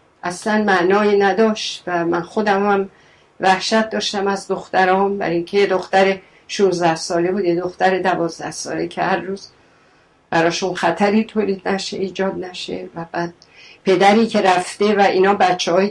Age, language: 50-69, Persian